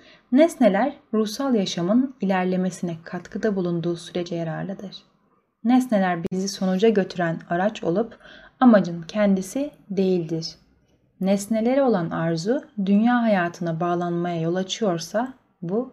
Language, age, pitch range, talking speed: Turkish, 30-49, 180-245 Hz, 100 wpm